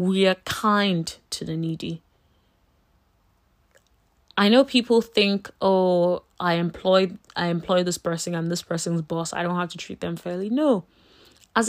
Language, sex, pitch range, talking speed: English, female, 175-230 Hz, 150 wpm